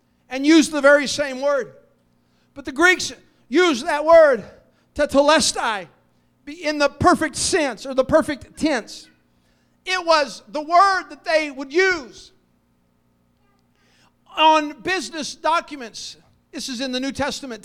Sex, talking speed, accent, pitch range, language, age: male, 135 wpm, American, 205-300 Hz, English, 50-69